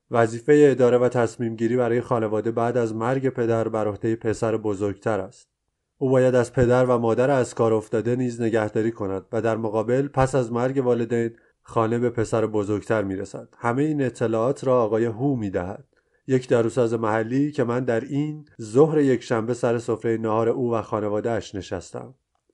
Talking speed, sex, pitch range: 180 wpm, male, 115-130 Hz